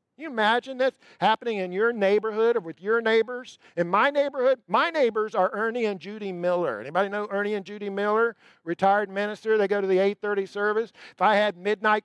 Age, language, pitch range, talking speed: 50-69, English, 205-330 Hz, 200 wpm